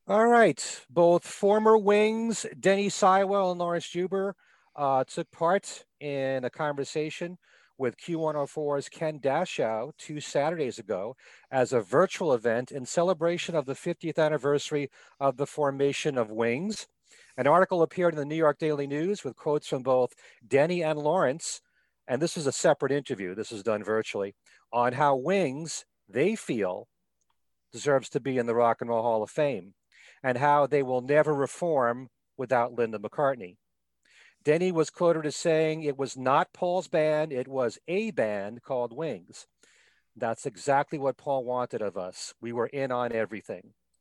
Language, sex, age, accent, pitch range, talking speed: English, male, 40-59, American, 130-170 Hz, 160 wpm